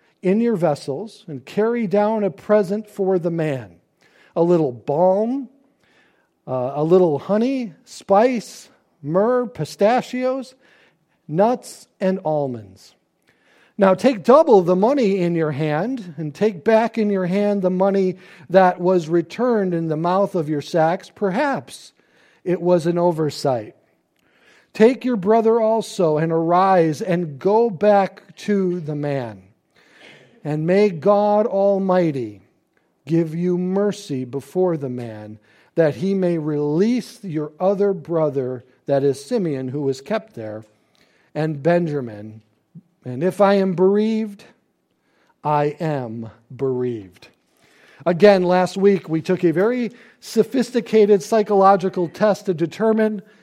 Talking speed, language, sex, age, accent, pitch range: 125 wpm, English, male, 50-69, American, 155-210 Hz